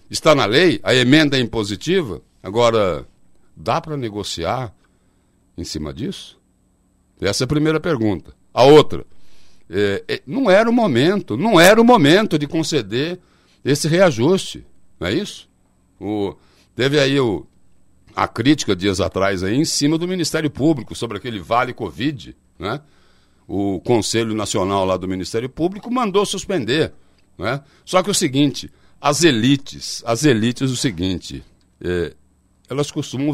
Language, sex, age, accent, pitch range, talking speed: Portuguese, male, 60-79, Brazilian, 100-150 Hz, 140 wpm